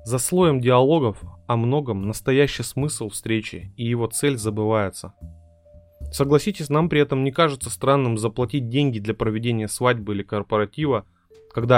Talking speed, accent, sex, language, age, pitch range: 140 wpm, native, male, Russian, 20-39, 105-140 Hz